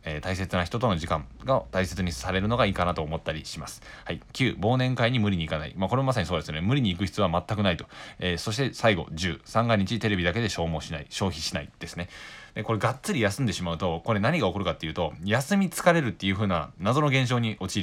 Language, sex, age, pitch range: Japanese, male, 20-39, 90-120 Hz